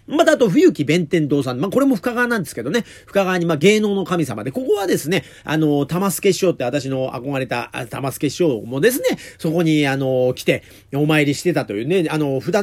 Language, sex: Japanese, male